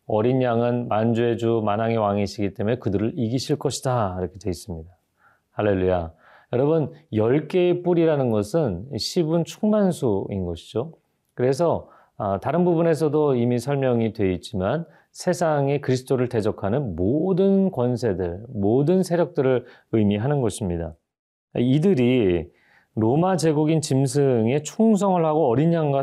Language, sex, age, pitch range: Korean, male, 40-59, 105-160 Hz